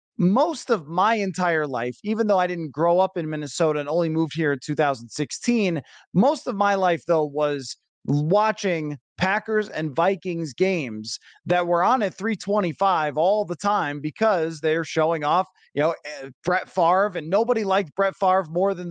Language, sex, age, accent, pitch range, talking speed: English, male, 30-49, American, 160-210 Hz, 170 wpm